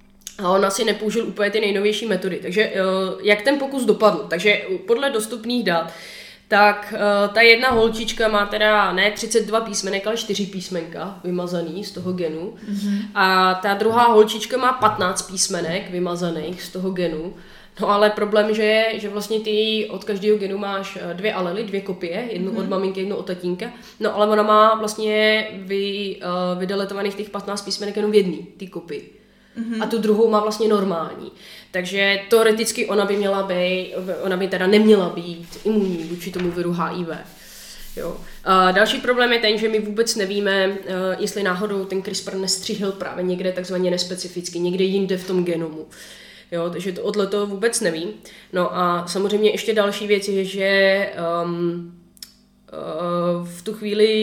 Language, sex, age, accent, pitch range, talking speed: Czech, female, 20-39, native, 185-215 Hz, 160 wpm